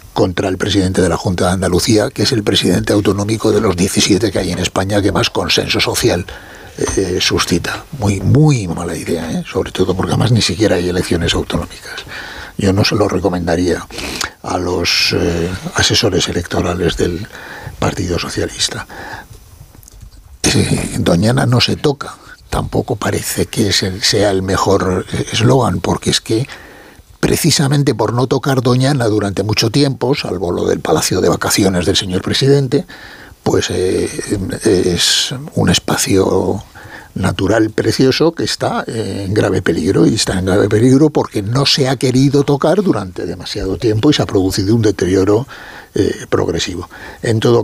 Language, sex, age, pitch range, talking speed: Spanish, male, 60-79, 95-120 Hz, 150 wpm